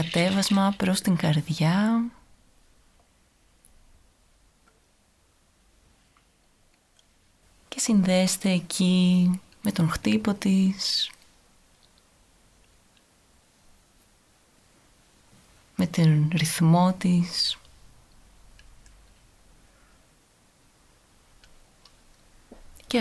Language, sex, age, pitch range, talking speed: Greek, female, 30-49, 140-185 Hz, 40 wpm